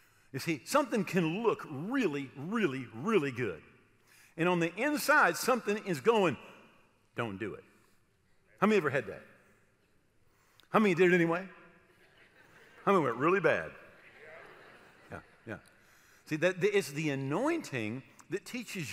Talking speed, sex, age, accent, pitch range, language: 135 wpm, male, 50-69, American, 135-200 Hz, English